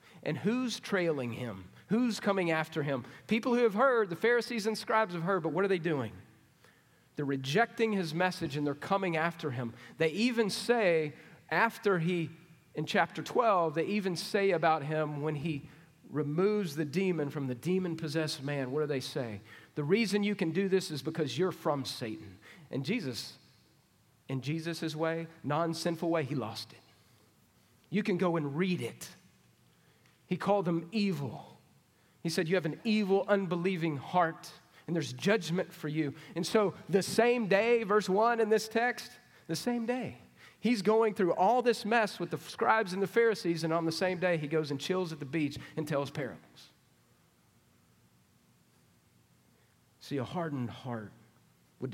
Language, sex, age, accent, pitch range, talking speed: English, male, 40-59, American, 140-195 Hz, 170 wpm